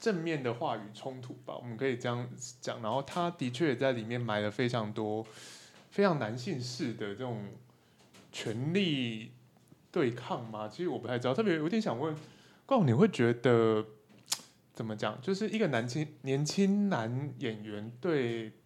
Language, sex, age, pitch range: Chinese, male, 20-39, 115-155 Hz